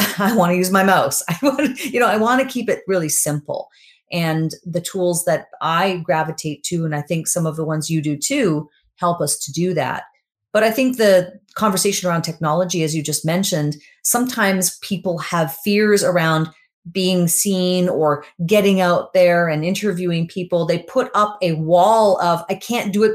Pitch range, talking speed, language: 160-195 Hz, 195 wpm, English